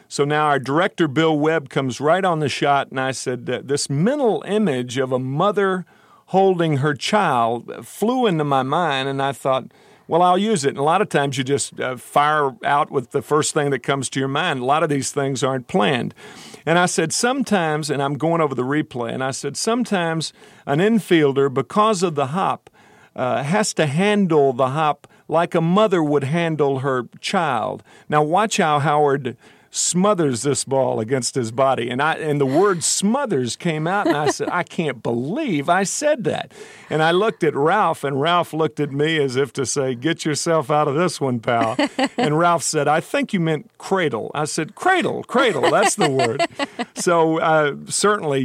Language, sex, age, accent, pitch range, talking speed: English, male, 50-69, American, 135-180 Hz, 200 wpm